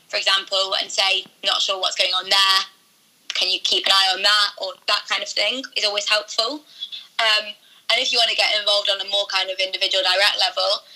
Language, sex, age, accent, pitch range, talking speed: English, female, 20-39, British, 195-225 Hz, 225 wpm